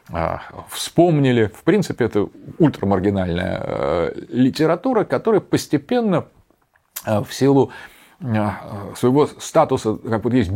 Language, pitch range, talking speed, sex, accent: Russian, 95-130 Hz, 85 wpm, male, native